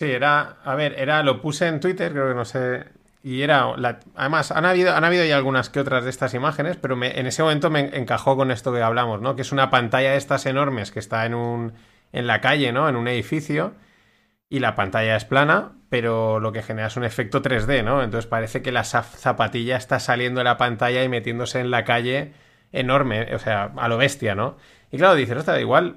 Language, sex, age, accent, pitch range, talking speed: Spanish, male, 30-49, Spanish, 120-145 Hz, 235 wpm